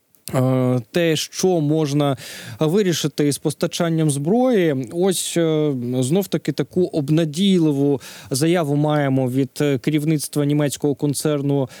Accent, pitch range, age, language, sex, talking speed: native, 140-175 Hz, 20-39, Ukrainian, male, 85 wpm